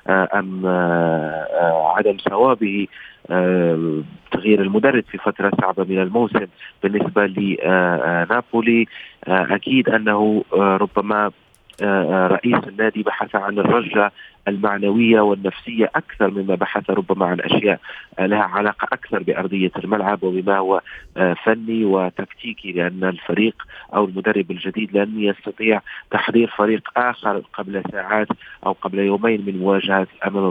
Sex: male